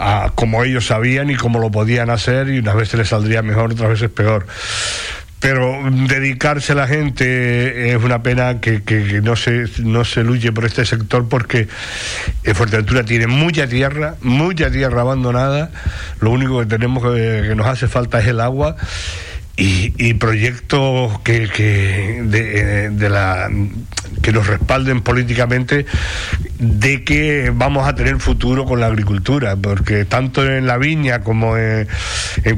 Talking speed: 155 wpm